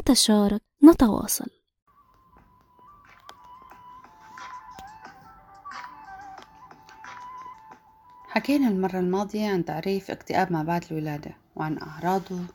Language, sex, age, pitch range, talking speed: Arabic, female, 30-49, 160-200 Hz, 60 wpm